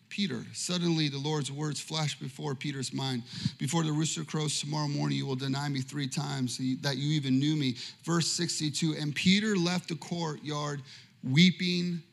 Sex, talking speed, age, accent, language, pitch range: male, 170 wpm, 30-49, American, English, 145-205 Hz